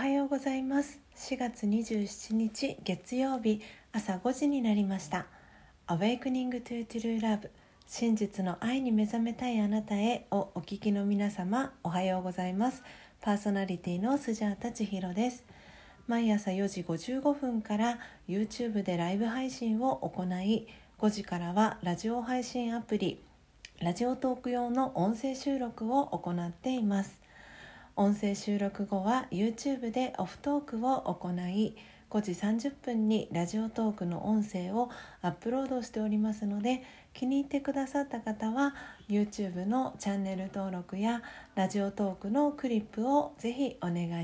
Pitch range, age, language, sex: 200-250 Hz, 40-59, Japanese, female